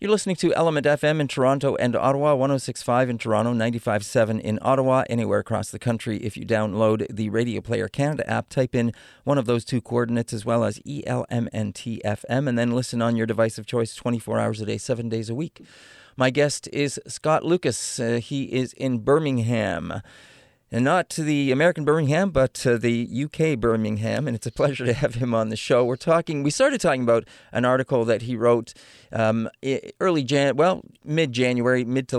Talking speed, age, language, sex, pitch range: 195 wpm, 40-59, English, male, 115-135 Hz